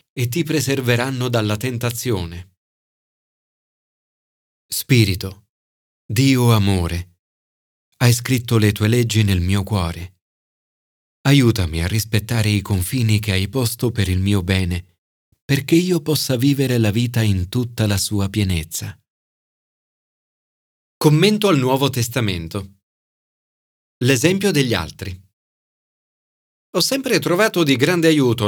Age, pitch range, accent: 40-59, 100-145 Hz, native